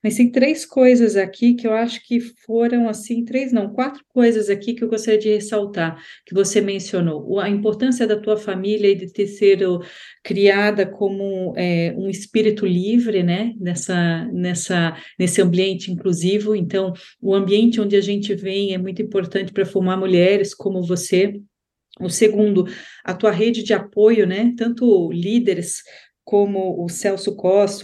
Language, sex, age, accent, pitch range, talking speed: Portuguese, female, 40-59, Brazilian, 185-215 Hz, 160 wpm